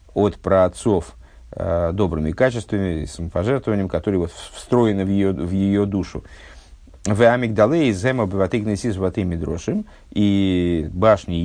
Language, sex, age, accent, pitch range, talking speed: Russian, male, 50-69, native, 85-105 Hz, 85 wpm